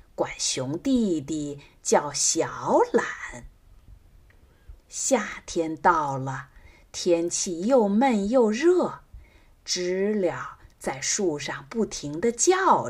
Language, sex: Chinese, female